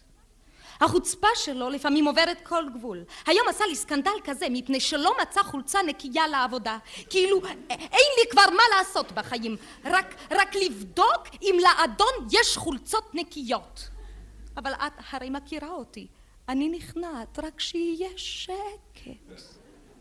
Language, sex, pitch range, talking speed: Hebrew, female, 260-360 Hz, 125 wpm